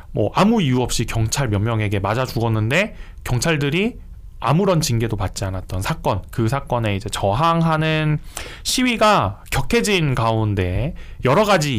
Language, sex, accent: Korean, male, native